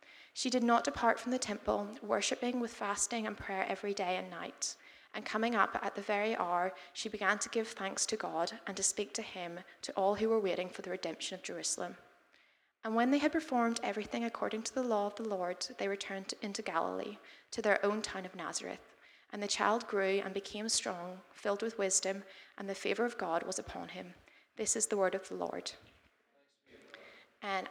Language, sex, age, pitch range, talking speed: English, female, 20-39, 190-225 Hz, 205 wpm